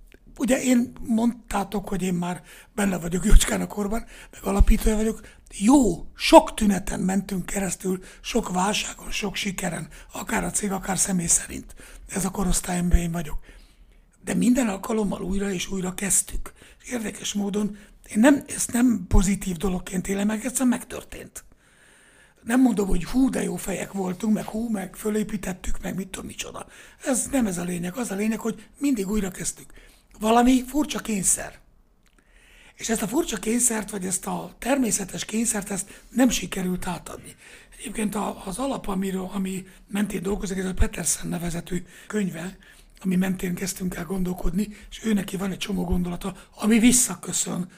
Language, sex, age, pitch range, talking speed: Hungarian, male, 60-79, 185-220 Hz, 155 wpm